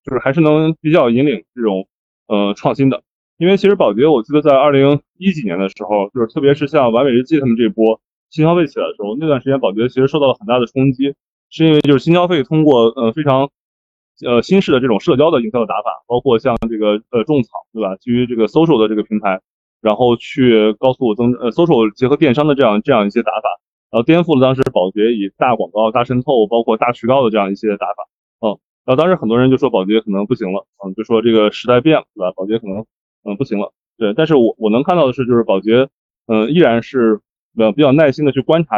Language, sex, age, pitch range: Chinese, male, 20-39, 110-135 Hz